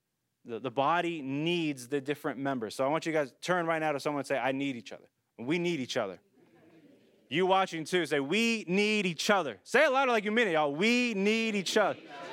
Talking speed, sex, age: 230 wpm, male, 20-39